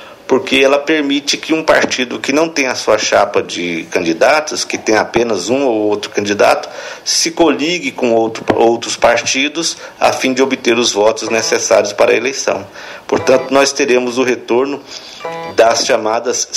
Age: 50-69